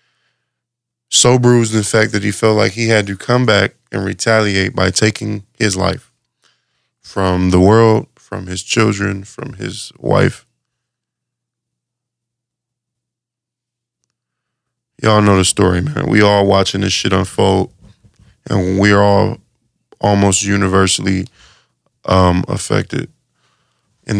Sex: male